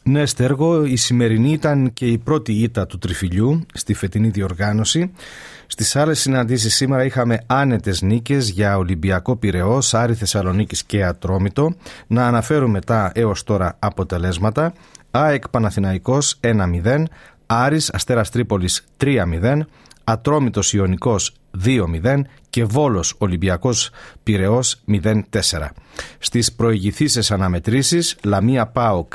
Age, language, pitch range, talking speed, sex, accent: 40-59, Greek, 100-130 Hz, 115 wpm, male, native